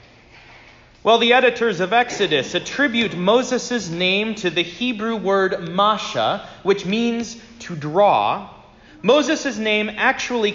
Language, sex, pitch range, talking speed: English, male, 160-230 Hz, 115 wpm